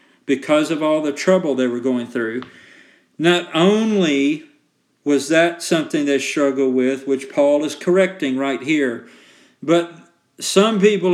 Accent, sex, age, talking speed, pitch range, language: American, male, 50-69, 140 wpm, 145-195 Hz, English